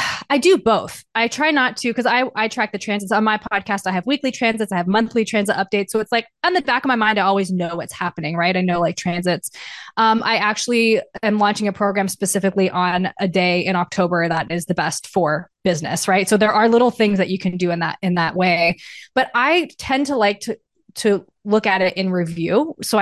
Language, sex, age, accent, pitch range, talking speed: English, female, 20-39, American, 180-220 Hz, 235 wpm